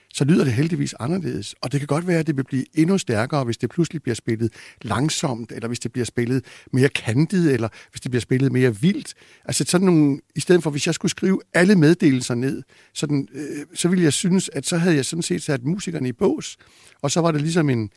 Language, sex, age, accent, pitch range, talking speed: Danish, male, 60-79, native, 130-170 Hz, 235 wpm